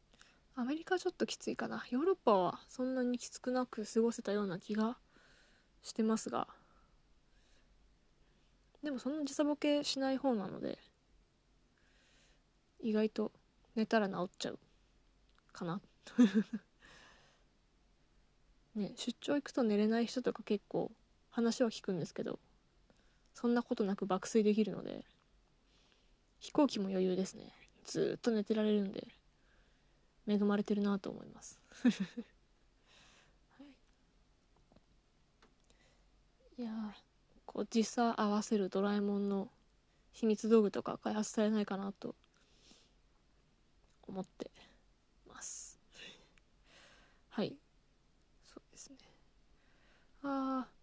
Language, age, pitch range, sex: Japanese, 20-39, 205-245 Hz, female